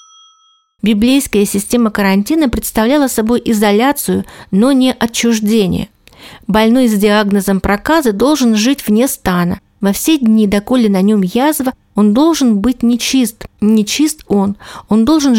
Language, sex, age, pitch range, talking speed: Russian, female, 40-59, 205-265 Hz, 125 wpm